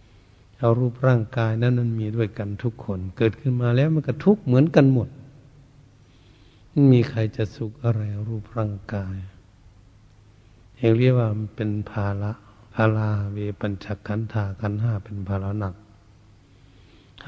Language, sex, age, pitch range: Thai, male, 60-79, 105-125 Hz